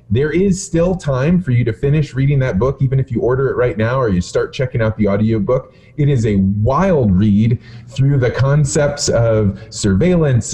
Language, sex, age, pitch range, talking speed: English, male, 30-49, 105-145 Hz, 200 wpm